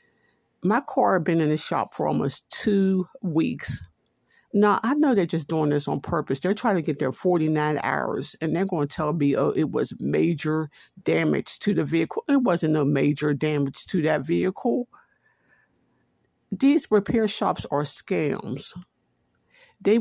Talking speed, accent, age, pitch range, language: 165 wpm, American, 50-69, 150-195 Hz, English